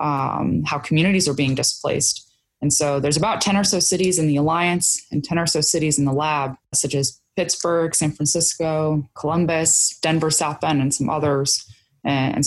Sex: female